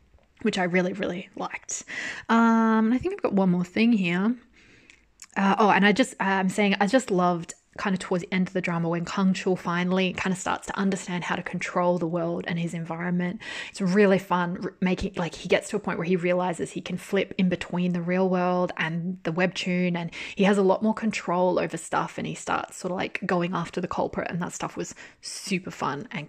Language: English